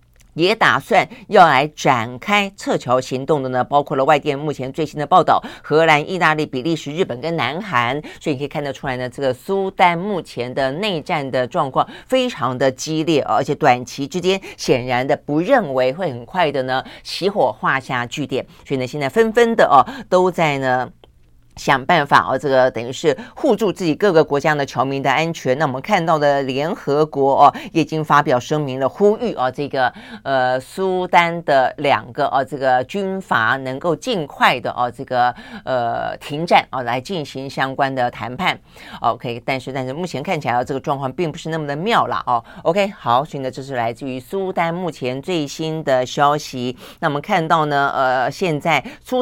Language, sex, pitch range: Chinese, female, 130-170 Hz